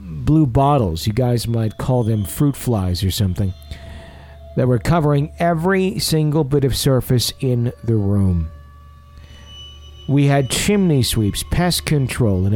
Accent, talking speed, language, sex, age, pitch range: American, 140 wpm, English, male, 50-69, 90-140 Hz